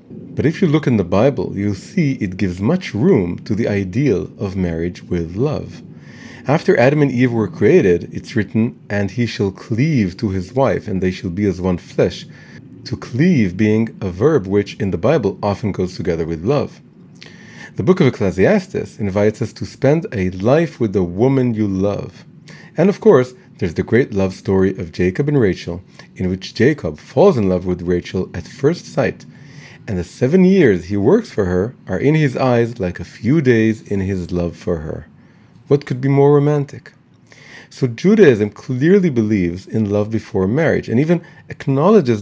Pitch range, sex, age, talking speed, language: 95-140 Hz, male, 40-59, 185 wpm, English